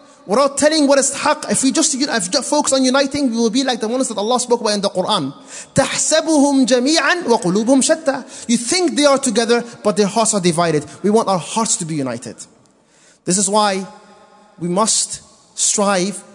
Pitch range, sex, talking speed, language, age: 190-250 Hz, male, 175 wpm, English, 30-49